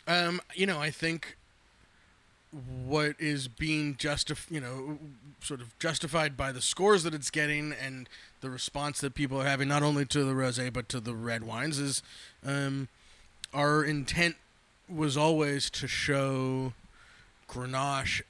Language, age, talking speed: English, 20-39, 150 wpm